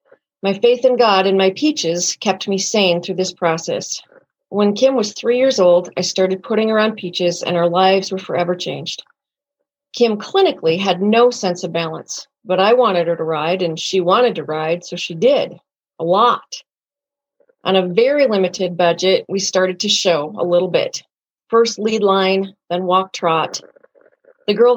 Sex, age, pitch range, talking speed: female, 40-59, 180-240 Hz, 180 wpm